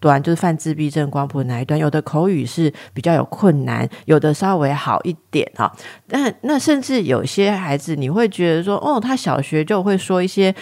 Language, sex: Chinese, female